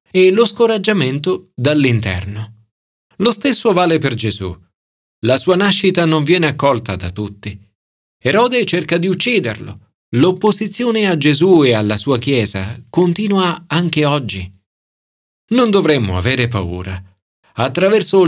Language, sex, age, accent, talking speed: Italian, male, 40-59, native, 120 wpm